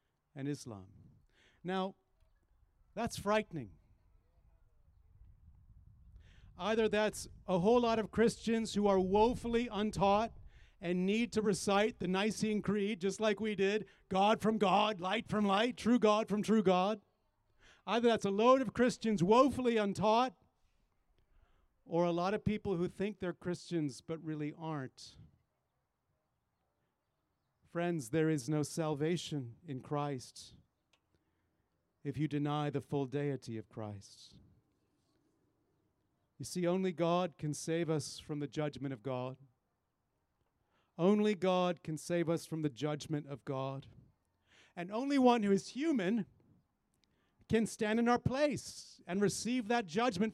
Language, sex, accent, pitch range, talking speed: English, male, American, 135-215 Hz, 130 wpm